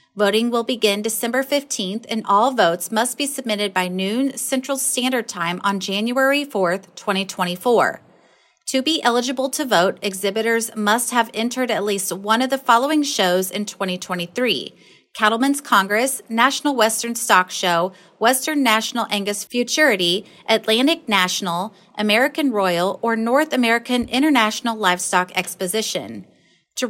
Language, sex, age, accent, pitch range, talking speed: English, female, 30-49, American, 200-255 Hz, 130 wpm